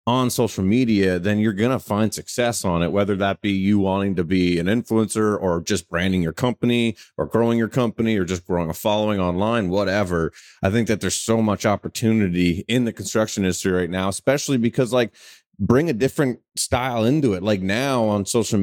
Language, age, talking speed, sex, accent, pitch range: English, 30-49, 200 wpm, male, American, 95-120 Hz